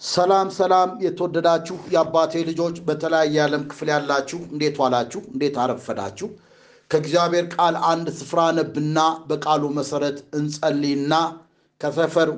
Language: Amharic